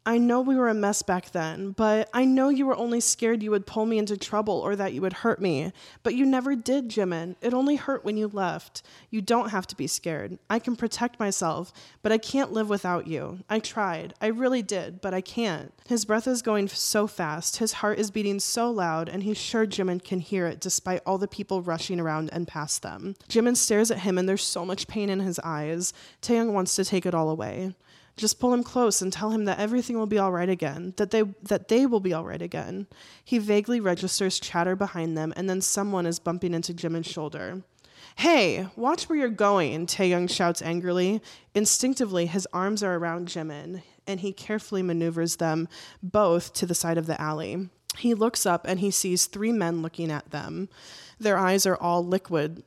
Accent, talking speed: American, 215 wpm